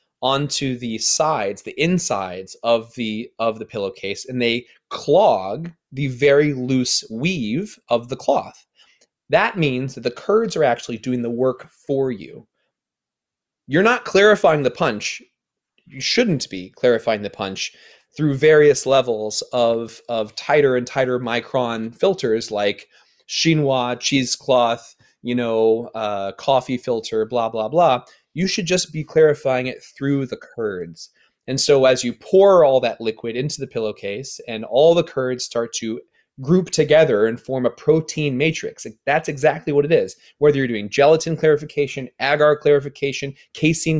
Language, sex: English, male